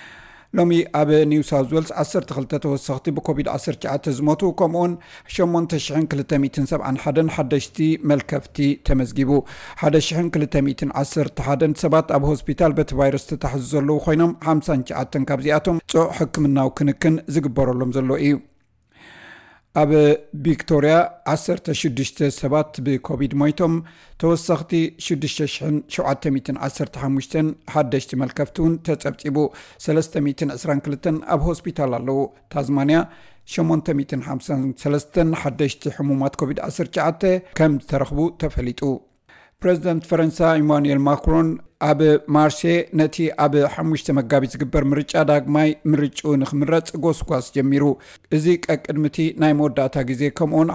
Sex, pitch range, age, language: male, 140-160 Hz, 50-69, Amharic